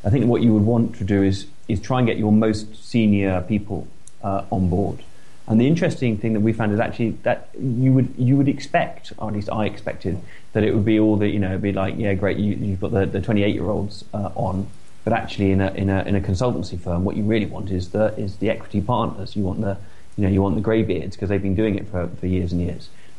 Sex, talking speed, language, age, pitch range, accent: male, 260 wpm, English, 30-49, 95-110 Hz, British